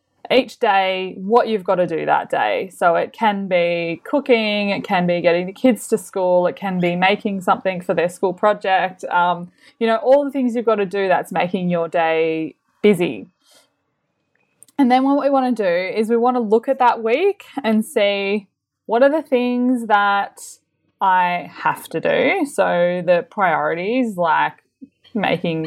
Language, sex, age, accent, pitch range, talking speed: English, female, 20-39, Australian, 175-235 Hz, 180 wpm